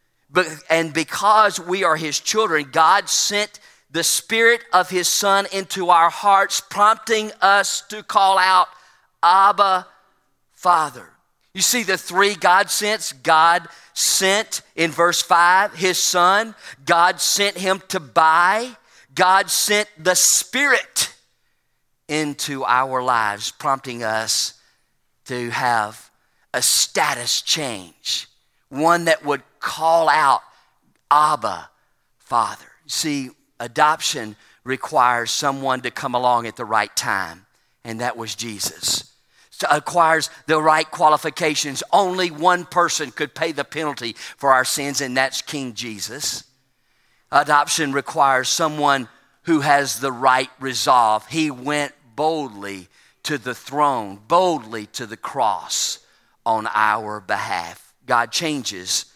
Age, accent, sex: 40-59, American, male